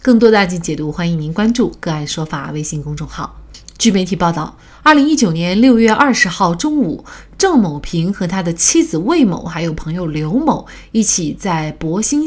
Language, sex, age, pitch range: Chinese, female, 30-49, 165-255 Hz